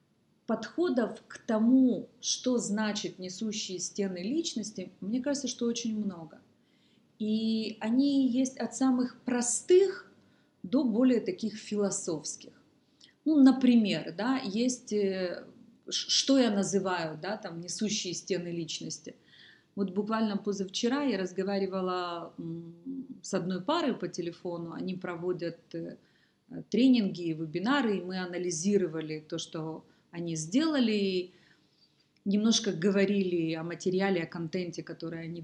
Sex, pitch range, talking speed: female, 175-225 Hz, 110 wpm